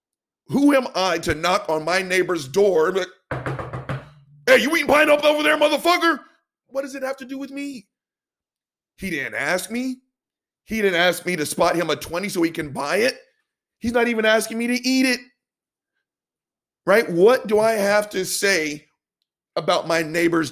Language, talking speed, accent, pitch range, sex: English, 175 wpm, American, 170-245 Hz, male